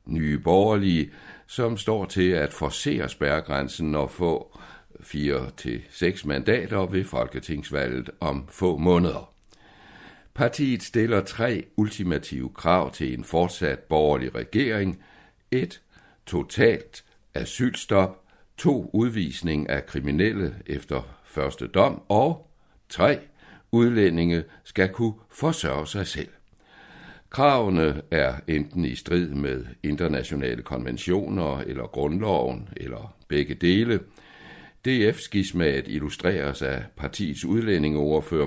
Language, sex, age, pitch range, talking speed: Danish, male, 60-79, 75-100 Hz, 100 wpm